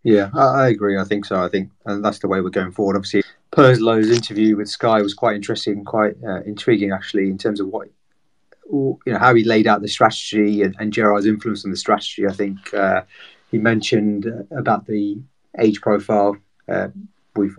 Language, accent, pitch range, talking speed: English, British, 100-110 Hz, 195 wpm